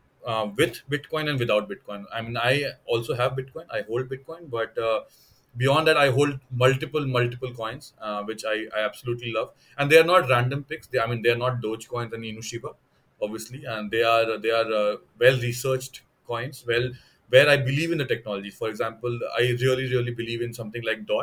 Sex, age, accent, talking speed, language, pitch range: male, 30-49, Indian, 200 wpm, English, 115-145 Hz